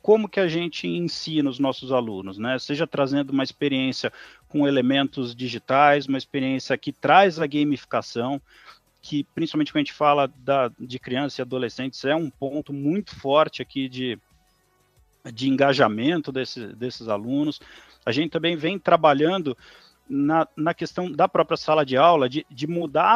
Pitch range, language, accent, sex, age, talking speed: 130-165 Hz, Portuguese, Brazilian, male, 50-69, 155 wpm